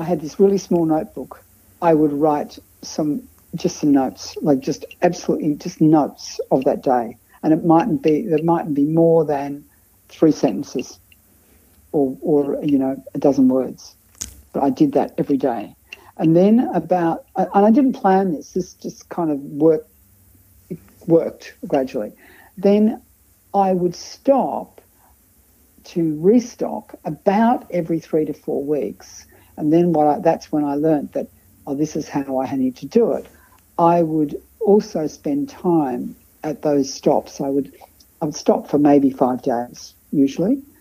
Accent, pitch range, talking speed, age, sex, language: Australian, 140-195 Hz, 160 wpm, 60-79, female, English